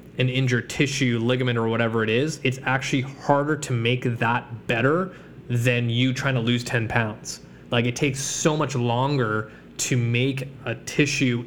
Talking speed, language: 165 wpm, English